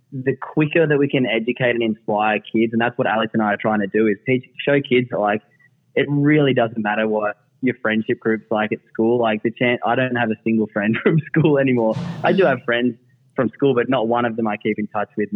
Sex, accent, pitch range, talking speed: male, Australian, 110-130 Hz, 245 wpm